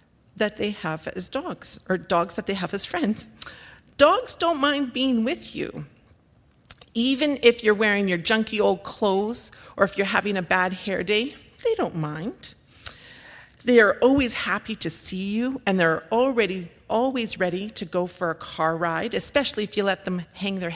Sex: female